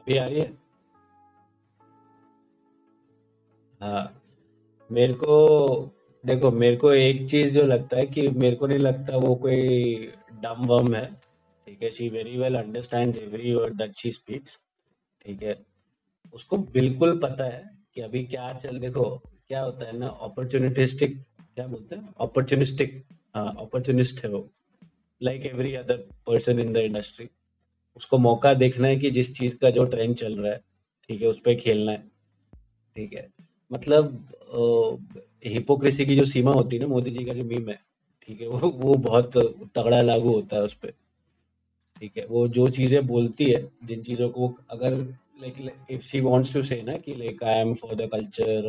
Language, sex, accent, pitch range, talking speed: Hindi, male, native, 110-135 Hz, 155 wpm